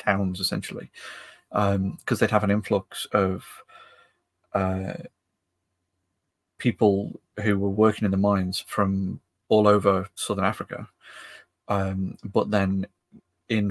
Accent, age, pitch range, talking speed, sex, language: British, 30-49, 95-105 Hz, 115 wpm, male, English